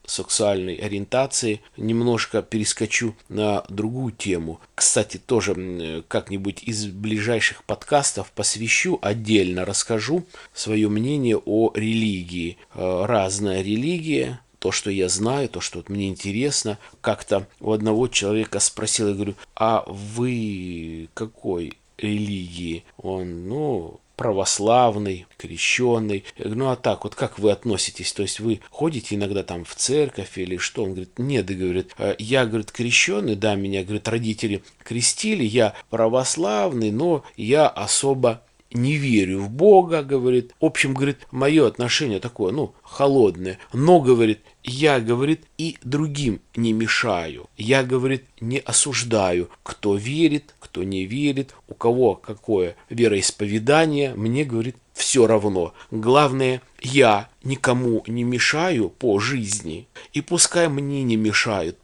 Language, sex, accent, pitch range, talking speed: Russian, male, native, 100-130 Hz, 125 wpm